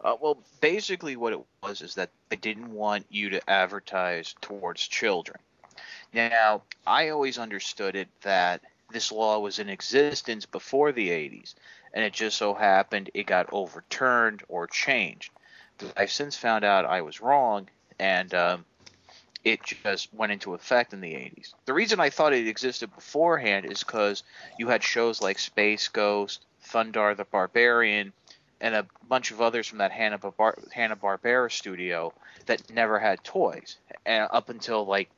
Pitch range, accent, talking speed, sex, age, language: 100-120 Hz, American, 160 wpm, male, 30-49, English